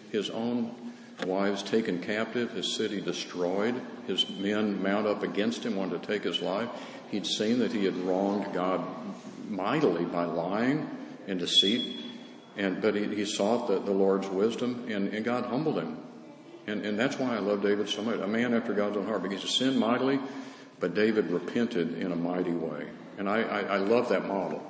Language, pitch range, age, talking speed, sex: English, 100-120 Hz, 50-69, 190 wpm, male